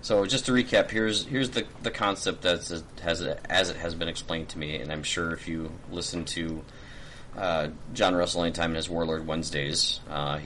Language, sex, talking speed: English, male, 195 wpm